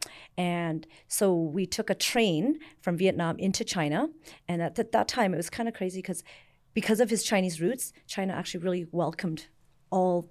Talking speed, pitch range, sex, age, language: 180 wpm, 165-200 Hz, female, 40-59, English